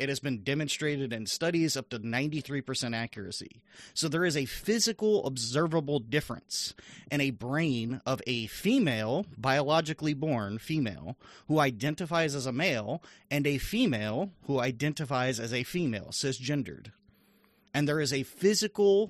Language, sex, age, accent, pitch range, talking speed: English, male, 30-49, American, 130-170 Hz, 140 wpm